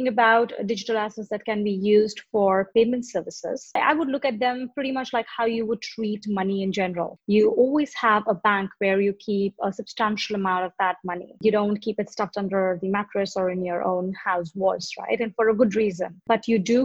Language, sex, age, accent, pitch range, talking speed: English, female, 30-49, Indian, 195-225 Hz, 225 wpm